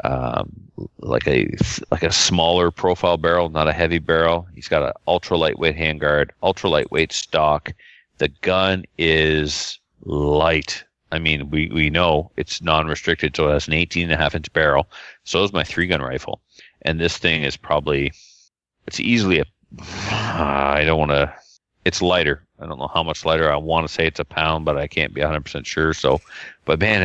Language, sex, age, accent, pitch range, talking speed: English, male, 30-49, American, 75-90 Hz, 190 wpm